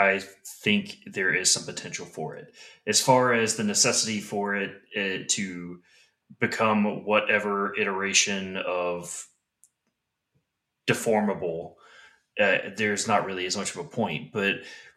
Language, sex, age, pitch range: English, male, 30-49, 95-120 Hz